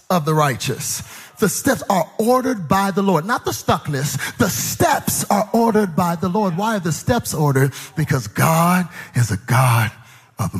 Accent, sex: American, male